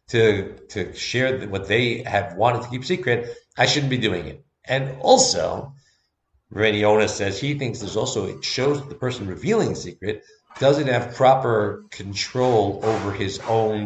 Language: English